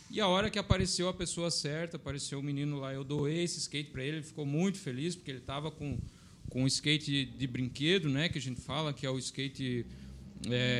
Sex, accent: male, Brazilian